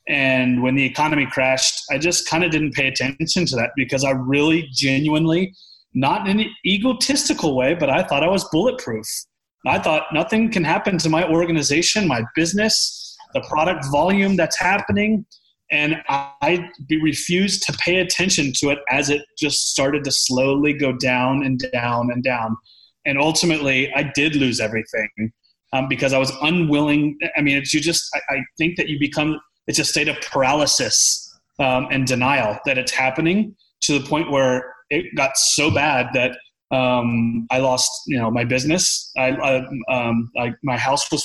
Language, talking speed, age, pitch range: English, 175 wpm, 30-49, 130-160 Hz